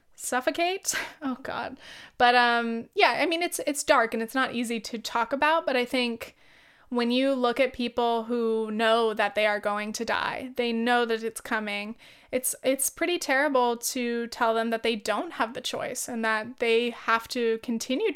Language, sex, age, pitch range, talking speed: English, female, 20-39, 225-255 Hz, 190 wpm